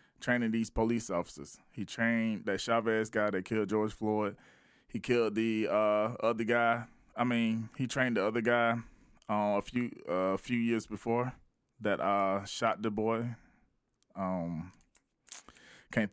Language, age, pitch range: English, 20-39, 100-120 Hz